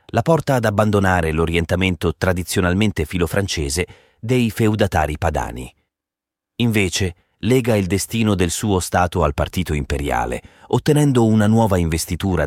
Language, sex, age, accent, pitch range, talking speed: Italian, male, 30-49, native, 80-110 Hz, 115 wpm